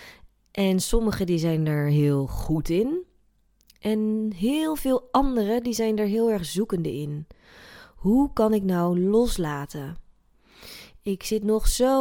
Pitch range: 170-215 Hz